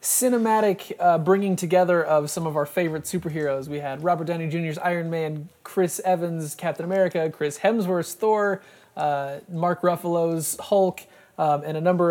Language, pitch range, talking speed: English, 150-185 Hz, 160 wpm